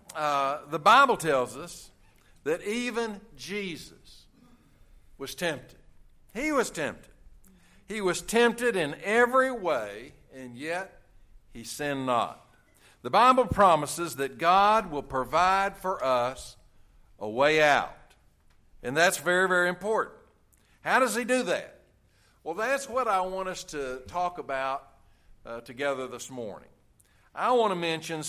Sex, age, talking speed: male, 60-79, 135 wpm